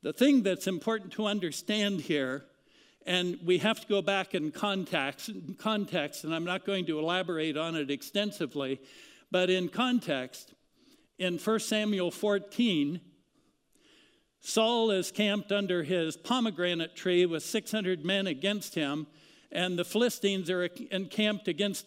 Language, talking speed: English, 135 wpm